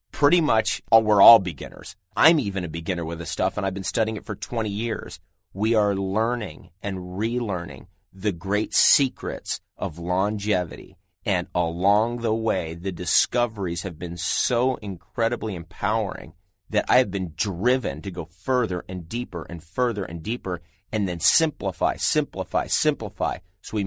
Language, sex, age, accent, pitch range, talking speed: English, male, 30-49, American, 90-115 Hz, 155 wpm